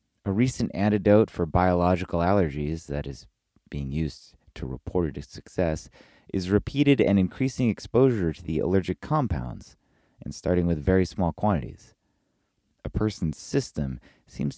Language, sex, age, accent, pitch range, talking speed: English, male, 30-49, American, 80-100 Hz, 135 wpm